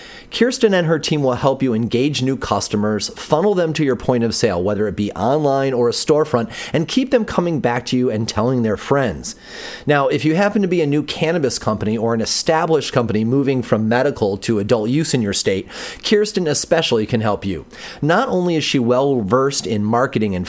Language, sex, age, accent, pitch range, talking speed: English, male, 30-49, American, 120-155 Hz, 210 wpm